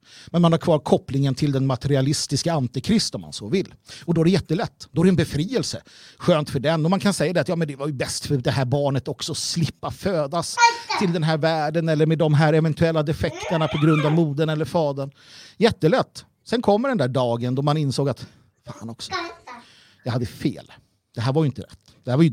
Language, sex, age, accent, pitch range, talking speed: Swedish, male, 50-69, native, 135-185 Hz, 230 wpm